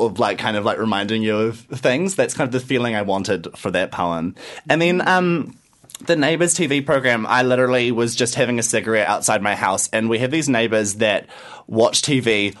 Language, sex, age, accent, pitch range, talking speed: English, male, 20-39, Australian, 105-140 Hz, 210 wpm